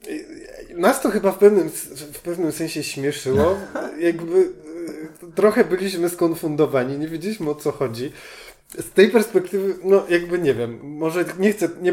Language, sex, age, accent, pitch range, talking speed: Polish, male, 20-39, native, 140-190 Hz, 150 wpm